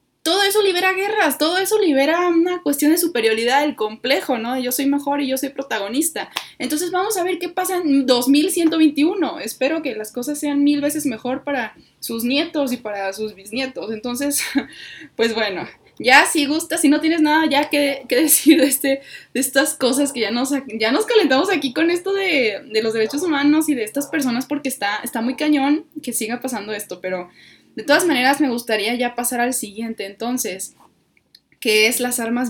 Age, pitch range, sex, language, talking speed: 20-39, 220-295 Hz, female, Spanish, 195 wpm